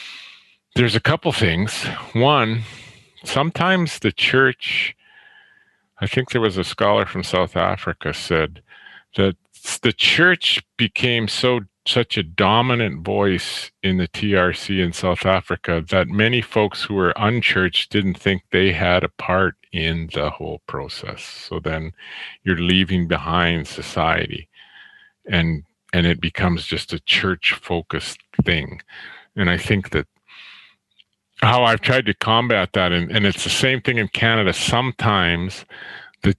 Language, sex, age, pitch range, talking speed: English, male, 50-69, 90-115 Hz, 135 wpm